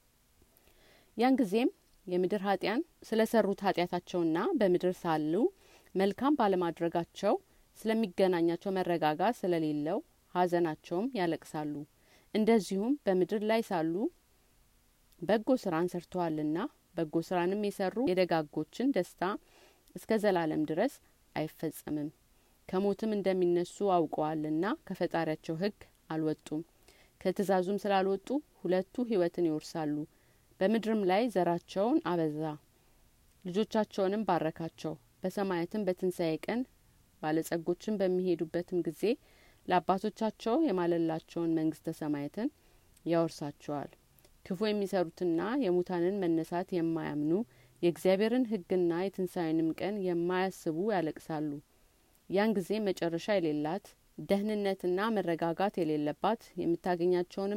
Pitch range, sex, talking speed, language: 165-200 Hz, female, 80 wpm, Amharic